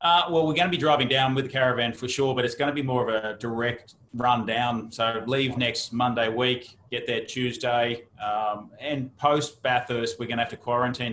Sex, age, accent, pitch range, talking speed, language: male, 30-49, Australian, 115-130 Hz, 225 wpm, English